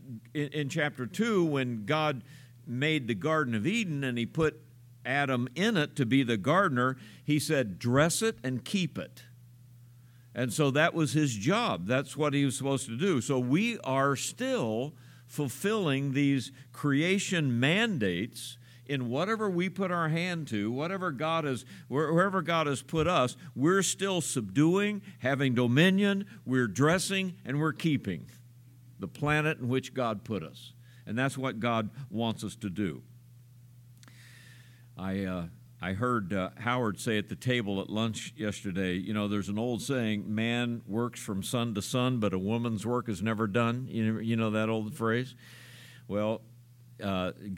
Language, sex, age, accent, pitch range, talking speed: English, male, 50-69, American, 115-145 Hz, 165 wpm